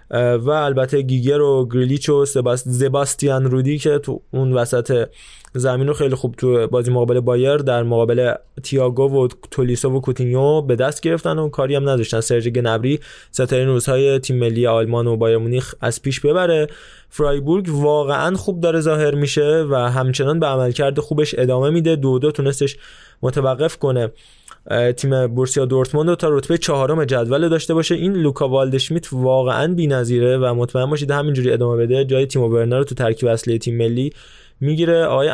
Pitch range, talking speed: 125-150 Hz, 175 wpm